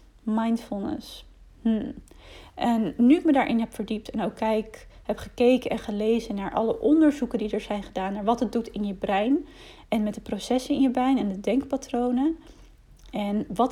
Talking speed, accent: 185 wpm, Dutch